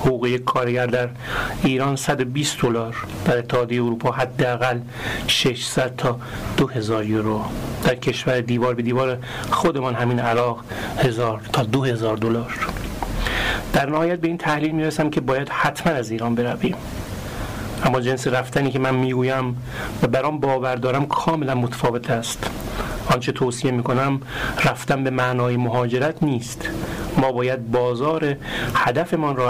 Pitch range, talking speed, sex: 120-135 Hz, 130 wpm, male